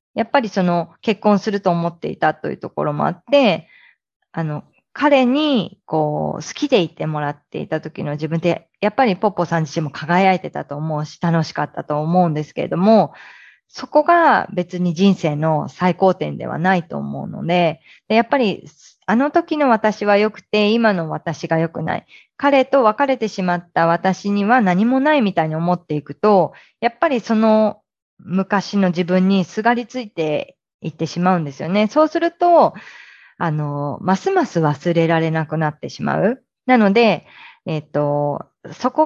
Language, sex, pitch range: Japanese, female, 165-245 Hz